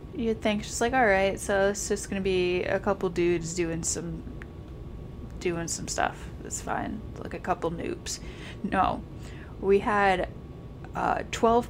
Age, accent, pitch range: 20-39, American, 170-205 Hz